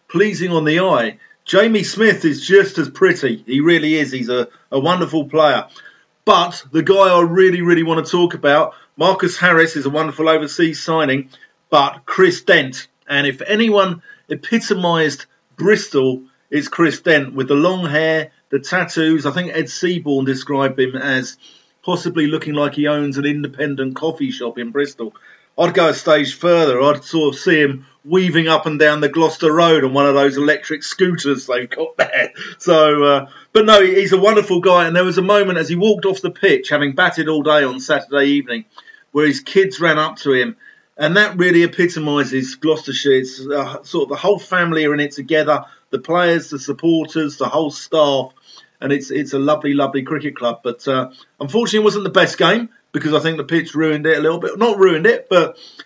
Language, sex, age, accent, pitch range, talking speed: English, male, 50-69, British, 140-180 Hz, 195 wpm